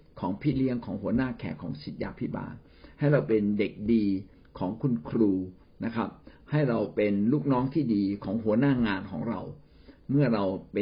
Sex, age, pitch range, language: male, 60-79, 100-135 Hz, Thai